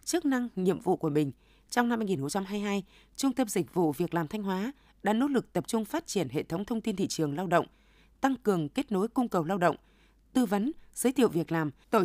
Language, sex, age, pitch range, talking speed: Vietnamese, female, 20-39, 175-235 Hz, 255 wpm